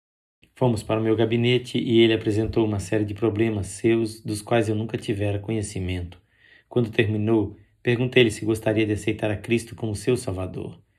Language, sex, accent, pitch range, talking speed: Portuguese, male, Brazilian, 105-115 Hz, 170 wpm